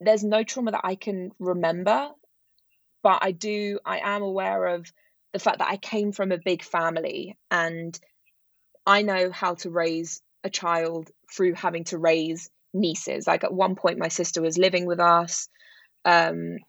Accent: British